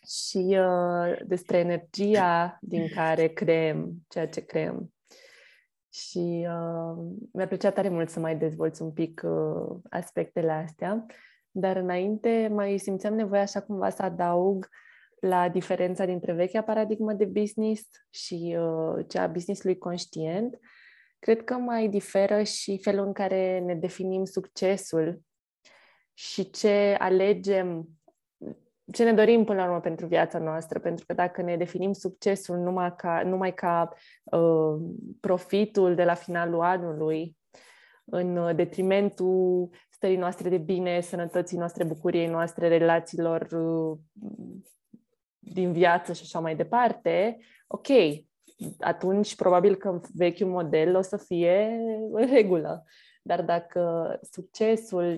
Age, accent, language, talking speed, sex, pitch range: 20-39, native, Romanian, 125 wpm, female, 170-200 Hz